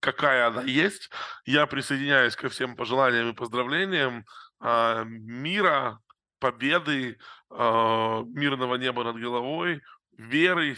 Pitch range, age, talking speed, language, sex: 125-145 Hz, 20-39, 95 wpm, Russian, male